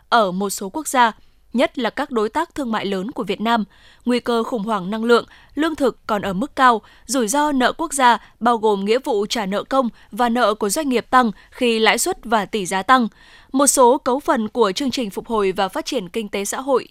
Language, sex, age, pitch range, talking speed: Vietnamese, female, 10-29, 215-265 Hz, 245 wpm